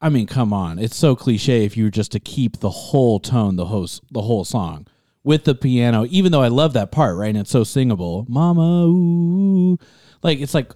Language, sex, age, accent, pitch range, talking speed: English, male, 30-49, American, 105-145 Hz, 220 wpm